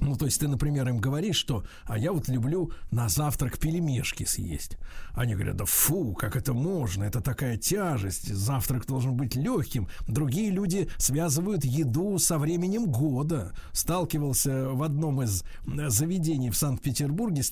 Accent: native